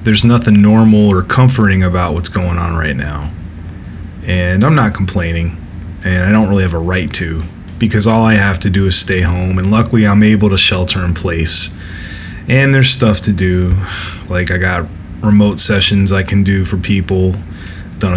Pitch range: 90-110 Hz